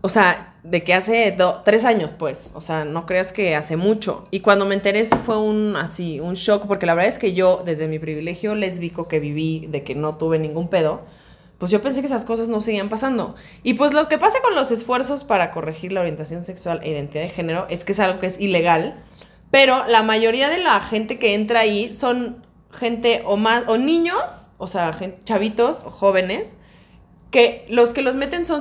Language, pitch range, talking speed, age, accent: Spanish, 175-230 Hz, 215 wpm, 20-39, Mexican